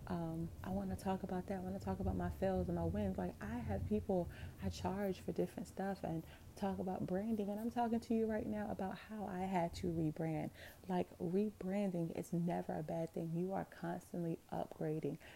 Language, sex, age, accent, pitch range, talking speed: English, female, 30-49, American, 160-190 Hz, 210 wpm